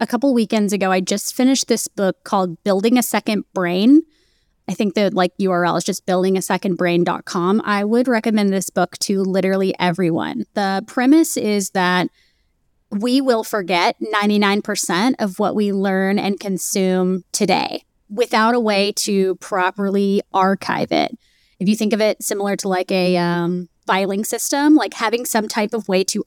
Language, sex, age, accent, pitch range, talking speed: English, female, 20-39, American, 190-230 Hz, 160 wpm